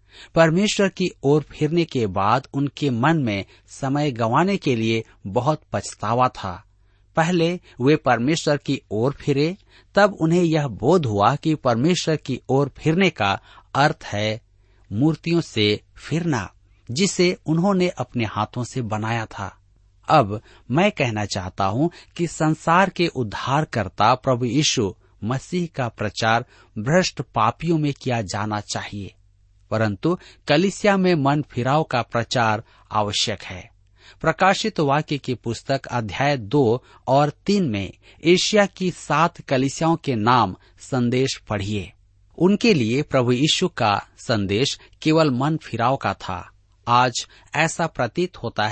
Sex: male